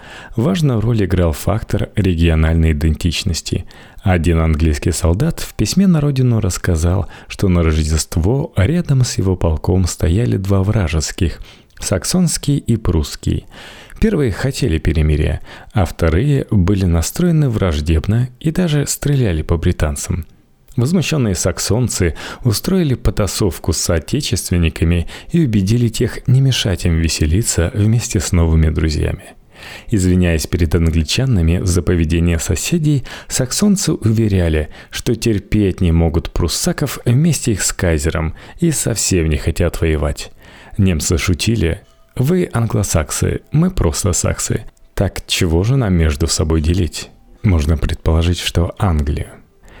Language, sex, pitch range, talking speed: Russian, male, 85-120 Hz, 115 wpm